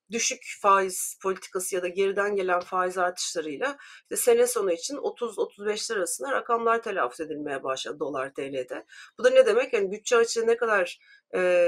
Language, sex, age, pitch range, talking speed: Turkish, female, 40-59, 180-270 Hz, 165 wpm